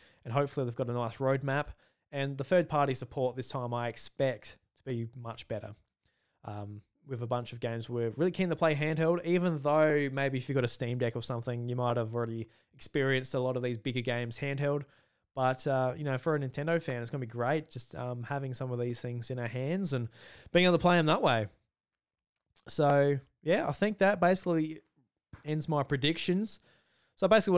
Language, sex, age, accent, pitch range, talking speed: English, male, 20-39, Australian, 120-145 Hz, 210 wpm